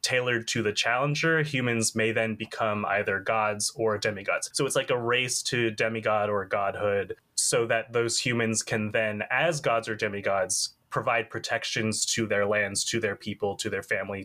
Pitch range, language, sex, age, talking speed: 110-125 Hz, English, male, 20-39, 175 wpm